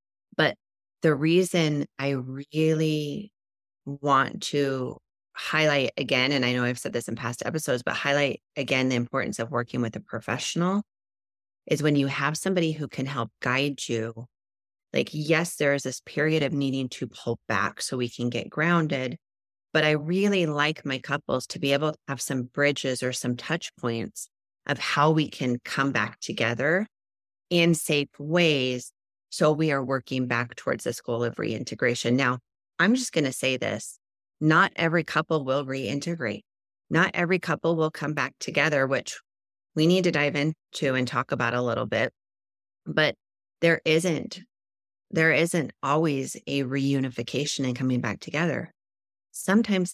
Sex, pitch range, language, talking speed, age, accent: female, 125-160 Hz, English, 160 wpm, 30-49, American